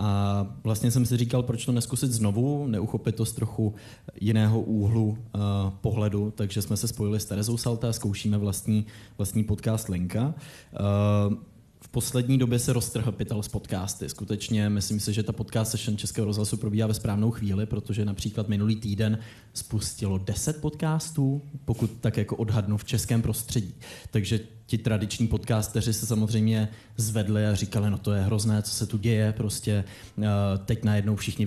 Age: 20-39